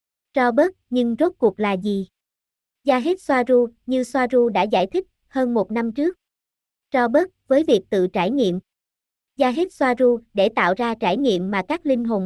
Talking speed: 195 wpm